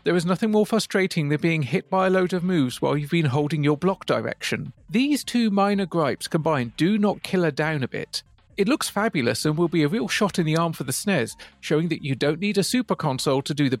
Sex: male